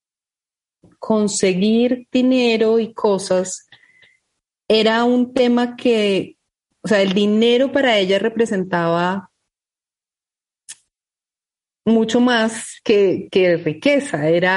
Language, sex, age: Spanish, female, 30-49